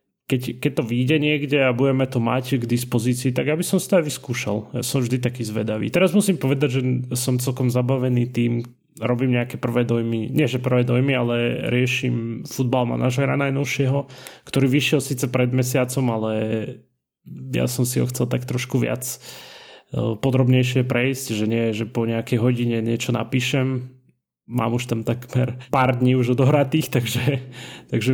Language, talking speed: Slovak, 165 wpm